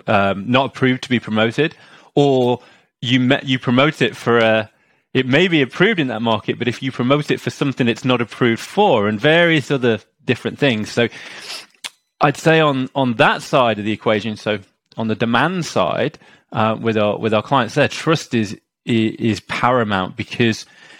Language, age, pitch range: English, 30-49, 110-135 Hz